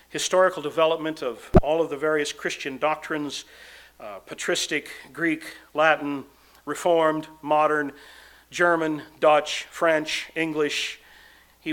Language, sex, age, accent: English, male, 50-69, American